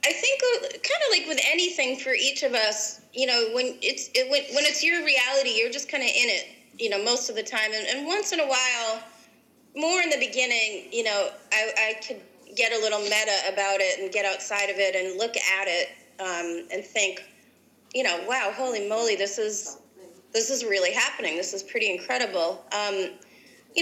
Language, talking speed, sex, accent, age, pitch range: English, 210 wpm, female, American, 30-49, 200-275 Hz